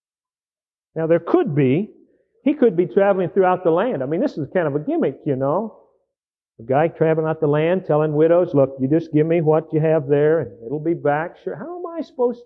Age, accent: 50-69, American